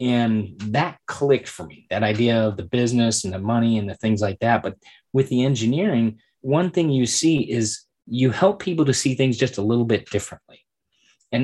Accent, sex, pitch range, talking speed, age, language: American, male, 105-130 Hz, 205 wpm, 30-49, English